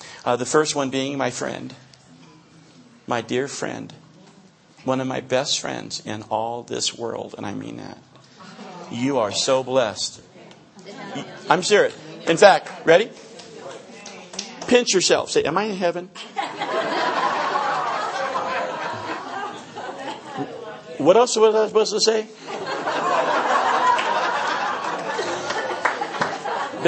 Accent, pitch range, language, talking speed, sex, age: American, 155-230 Hz, English, 105 wpm, male, 50-69